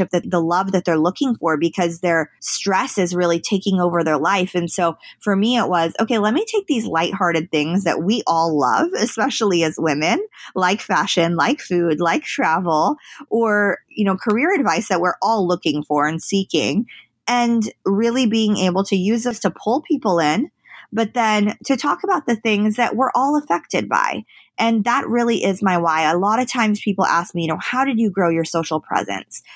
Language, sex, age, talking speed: English, female, 20-39, 200 wpm